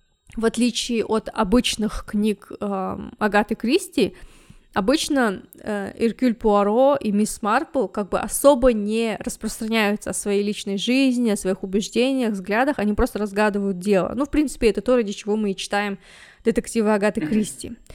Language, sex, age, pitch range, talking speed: Russian, female, 20-39, 205-245 Hz, 150 wpm